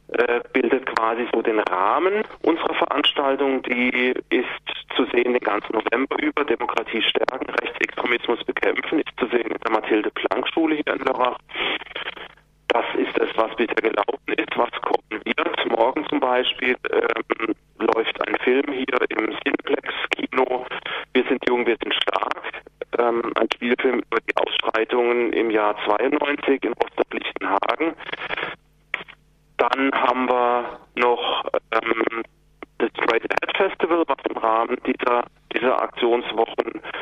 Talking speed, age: 130 wpm, 40-59